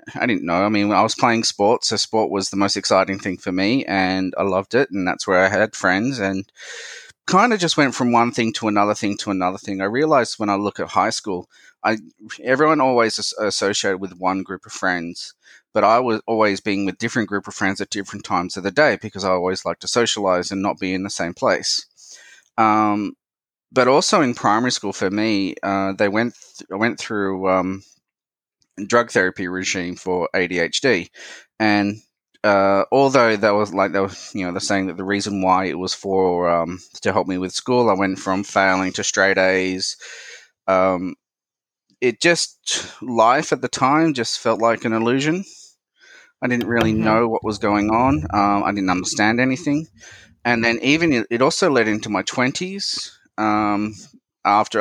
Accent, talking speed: Australian, 190 wpm